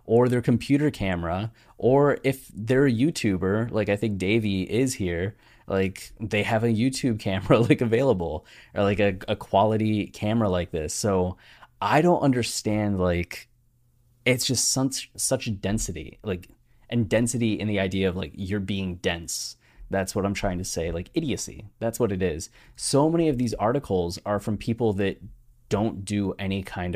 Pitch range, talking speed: 95-115 Hz, 175 wpm